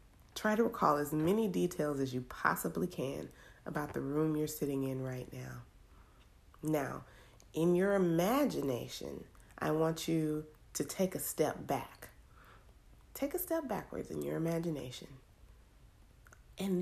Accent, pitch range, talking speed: American, 150-195 Hz, 135 wpm